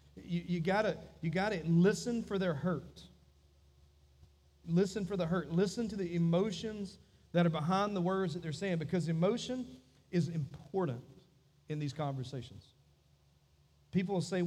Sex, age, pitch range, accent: male, 40-59, 125-170 Hz, American